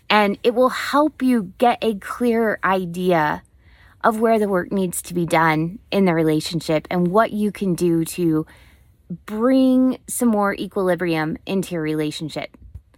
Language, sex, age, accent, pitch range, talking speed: English, female, 20-39, American, 185-245 Hz, 155 wpm